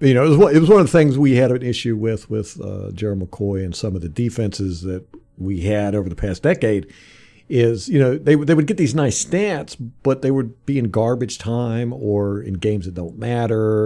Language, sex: English, male